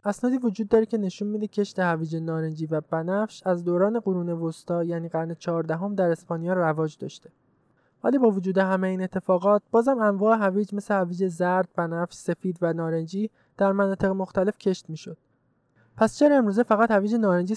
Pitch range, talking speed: 165-215 Hz, 170 wpm